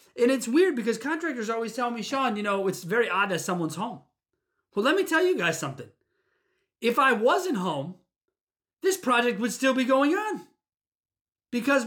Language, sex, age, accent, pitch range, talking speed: English, male, 30-49, American, 185-260 Hz, 180 wpm